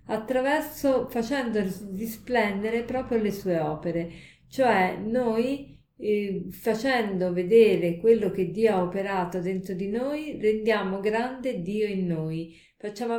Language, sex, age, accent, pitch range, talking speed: Italian, female, 40-59, native, 185-230 Hz, 120 wpm